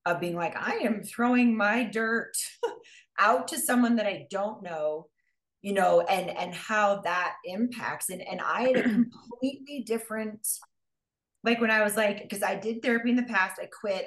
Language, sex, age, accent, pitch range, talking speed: English, female, 30-49, American, 180-240 Hz, 185 wpm